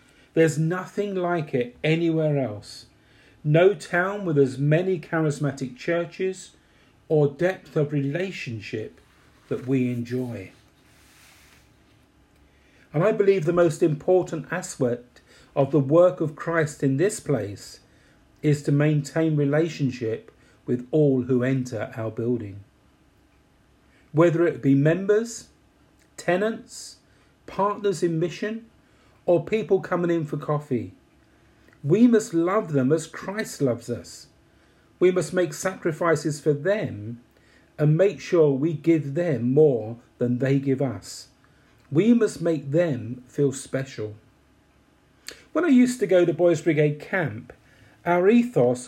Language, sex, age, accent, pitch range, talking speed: English, male, 40-59, British, 130-175 Hz, 125 wpm